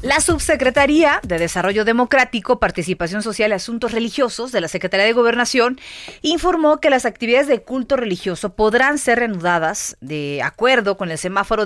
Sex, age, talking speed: female, 30-49, 155 wpm